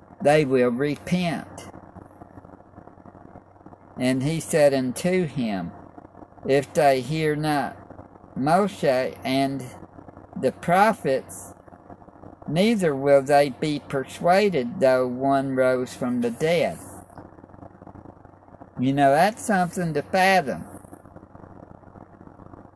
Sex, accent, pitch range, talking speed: male, American, 100-150 Hz, 85 wpm